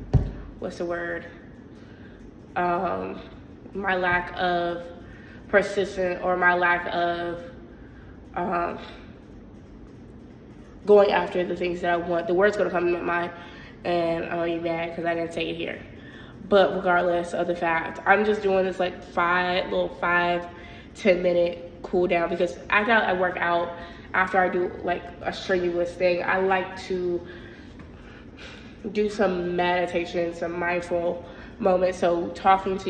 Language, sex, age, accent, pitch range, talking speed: English, female, 20-39, American, 175-185 Hz, 145 wpm